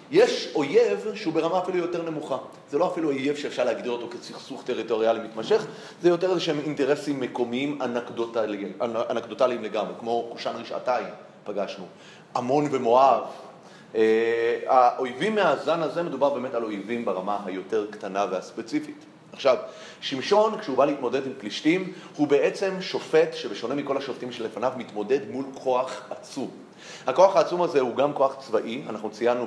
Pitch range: 115-165 Hz